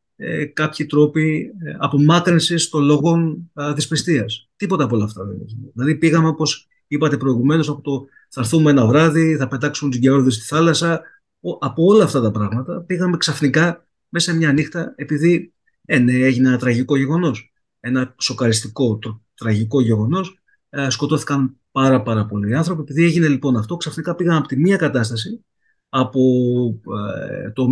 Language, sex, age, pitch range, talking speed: Greek, male, 30-49, 125-165 Hz, 145 wpm